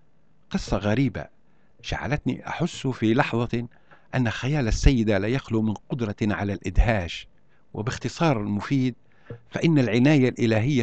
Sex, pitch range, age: male, 110-140 Hz, 50-69